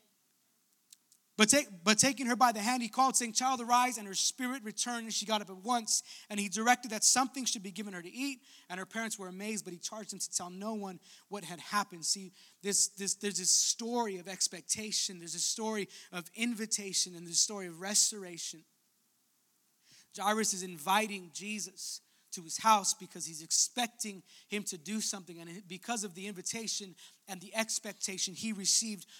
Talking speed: 185 wpm